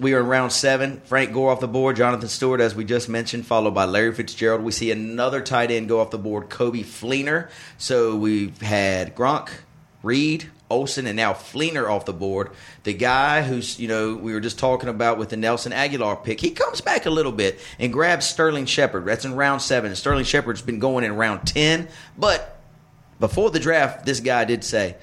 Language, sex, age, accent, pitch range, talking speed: English, male, 30-49, American, 110-140 Hz, 210 wpm